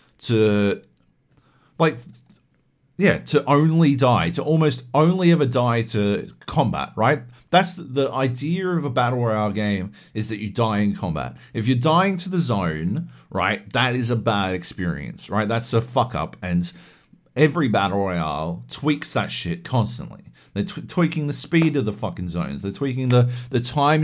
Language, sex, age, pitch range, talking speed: English, male, 40-59, 110-155 Hz, 170 wpm